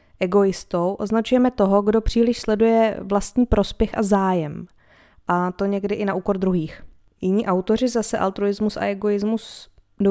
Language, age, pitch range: Czech, 20-39, 185-220 Hz